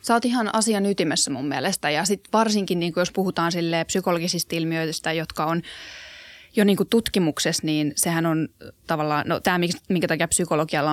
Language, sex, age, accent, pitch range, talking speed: Finnish, female, 20-39, native, 160-185 Hz, 165 wpm